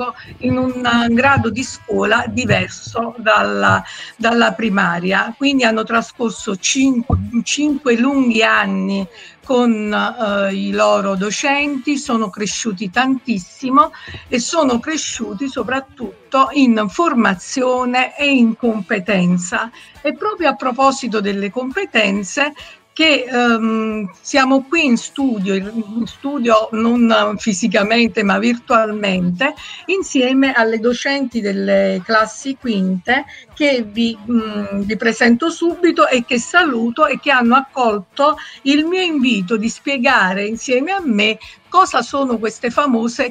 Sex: female